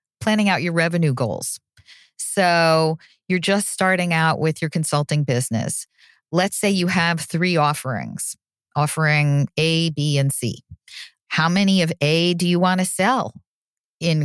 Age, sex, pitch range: 40-59, female, 160-205 Hz